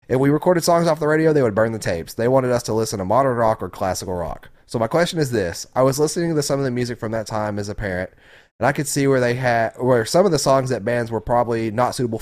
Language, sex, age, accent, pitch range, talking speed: English, male, 30-49, American, 105-135 Hz, 285 wpm